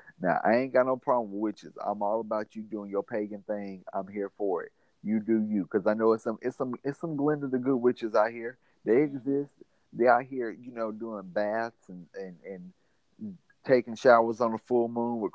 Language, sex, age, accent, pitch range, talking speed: English, male, 30-49, American, 95-120 Hz, 225 wpm